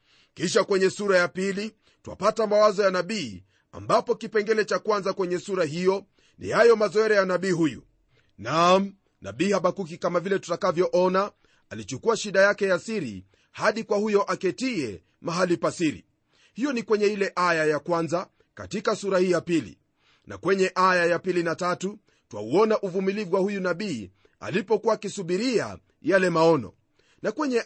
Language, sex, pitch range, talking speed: Swahili, male, 175-210 Hz, 150 wpm